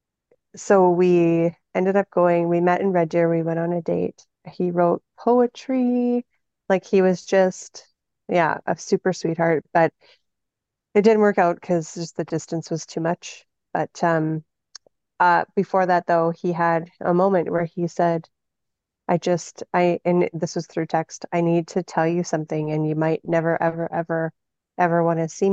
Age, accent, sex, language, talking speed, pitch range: 30-49, American, female, English, 175 wpm, 165-185 Hz